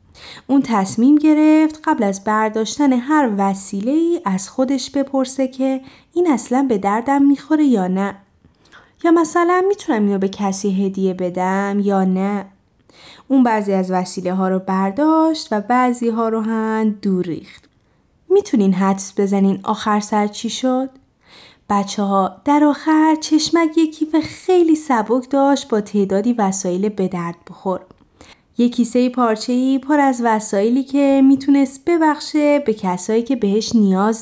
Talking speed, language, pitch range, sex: 140 wpm, Persian, 200-275 Hz, female